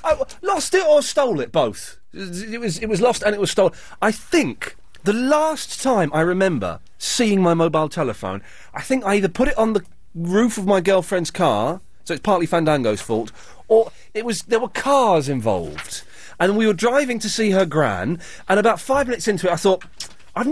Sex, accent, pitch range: male, British, 150-225 Hz